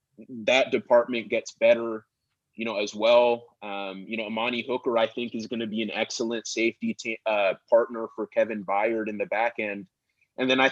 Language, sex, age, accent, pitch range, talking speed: English, male, 30-49, American, 110-135 Hz, 195 wpm